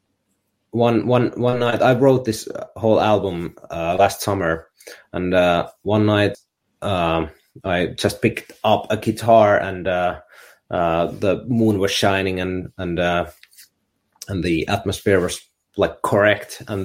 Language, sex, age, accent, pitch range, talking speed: English, male, 30-49, Finnish, 90-105 Hz, 145 wpm